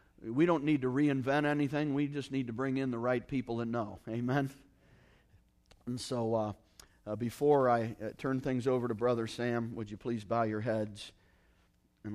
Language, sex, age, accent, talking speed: English, male, 40-59, American, 180 wpm